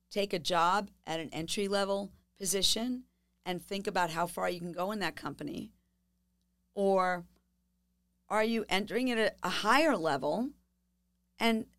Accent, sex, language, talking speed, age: American, female, English, 145 wpm, 50-69